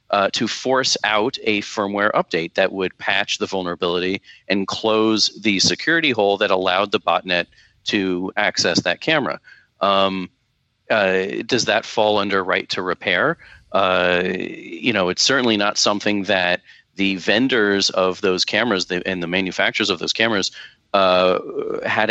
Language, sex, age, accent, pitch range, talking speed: English, male, 40-59, American, 90-105 Hz, 150 wpm